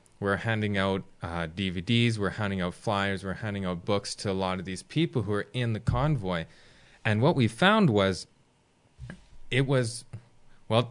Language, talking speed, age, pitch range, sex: English, 175 wpm, 20-39, 95-120 Hz, male